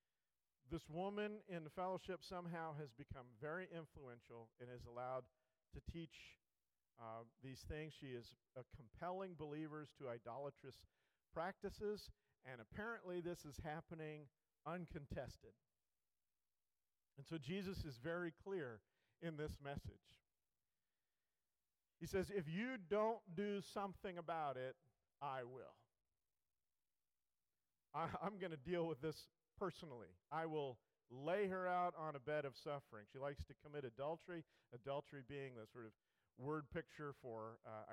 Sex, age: male, 50-69